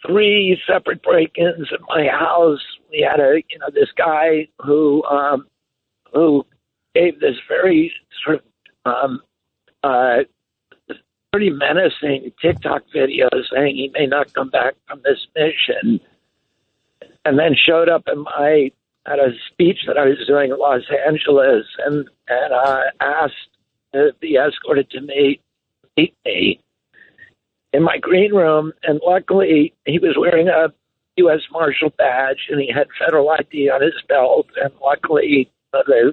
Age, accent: 60-79, American